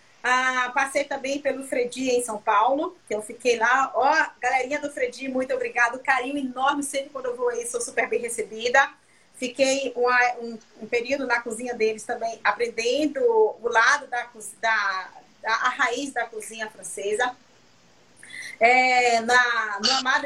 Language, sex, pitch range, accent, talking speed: Portuguese, female, 235-280 Hz, Brazilian, 155 wpm